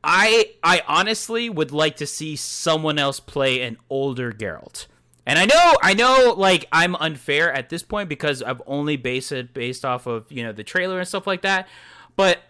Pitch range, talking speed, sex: 125-165 Hz, 195 wpm, male